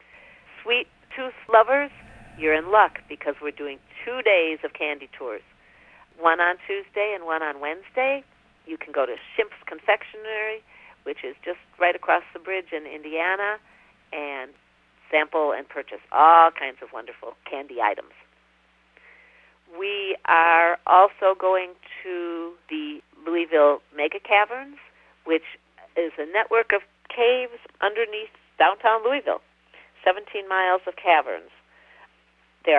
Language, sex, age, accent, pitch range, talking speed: English, female, 50-69, American, 150-230 Hz, 125 wpm